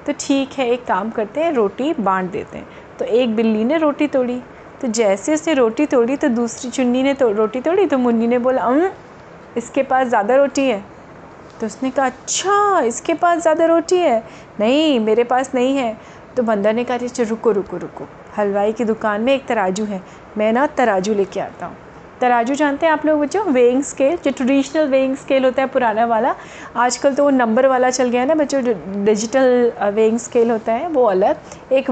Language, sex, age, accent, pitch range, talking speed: Hindi, female, 30-49, native, 225-285 Hz, 210 wpm